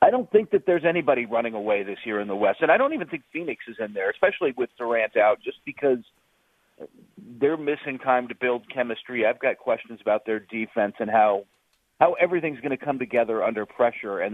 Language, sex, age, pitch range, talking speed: English, male, 40-59, 115-155 Hz, 215 wpm